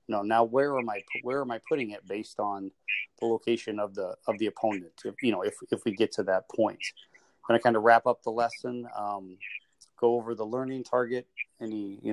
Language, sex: English, male